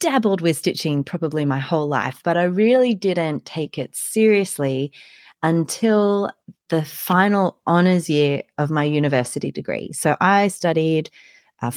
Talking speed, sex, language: 140 wpm, female, English